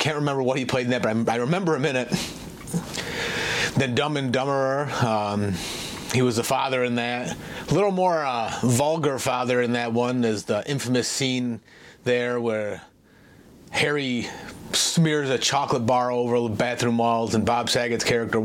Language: English